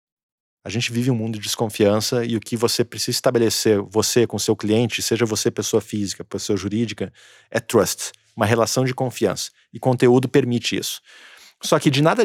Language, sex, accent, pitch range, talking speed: Portuguese, male, Brazilian, 115-150 Hz, 180 wpm